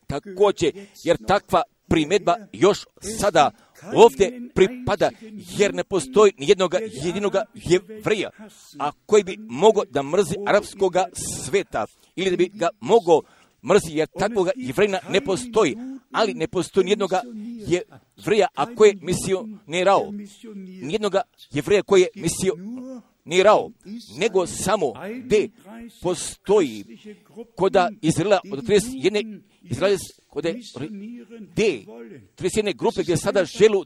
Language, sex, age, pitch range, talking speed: Croatian, male, 50-69, 180-215 Hz, 120 wpm